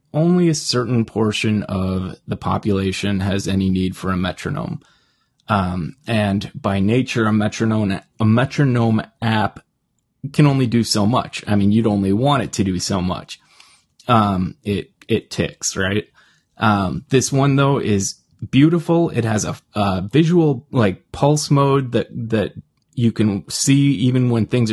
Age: 20-39